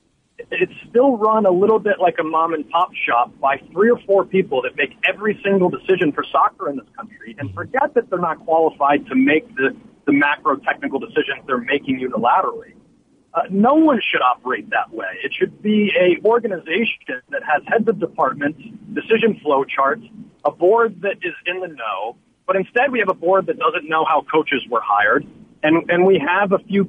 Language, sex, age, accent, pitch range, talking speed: English, male, 40-59, American, 165-235 Hz, 190 wpm